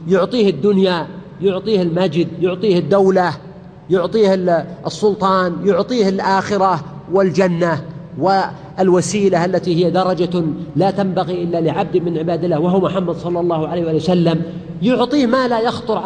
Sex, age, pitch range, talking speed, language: male, 50-69, 155-195 Hz, 120 wpm, Arabic